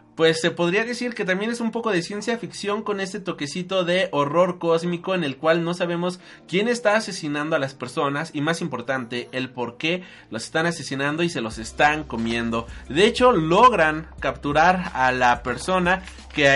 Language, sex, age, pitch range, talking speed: Spanish, male, 30-49, 145-195 Hz, 185 wpm